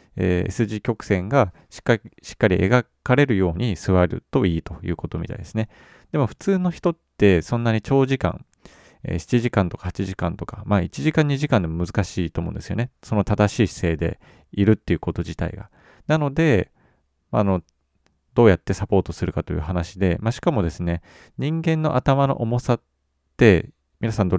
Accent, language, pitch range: native, Japanese, 90-130 Hz